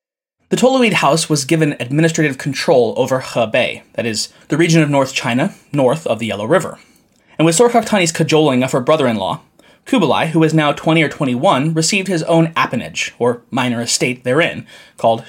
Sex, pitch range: male, 140-195 Hz